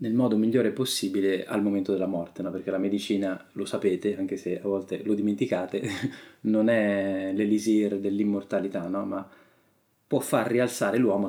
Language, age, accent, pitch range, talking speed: Italian, 20-39, native, 100-115 Hz, 150 wpm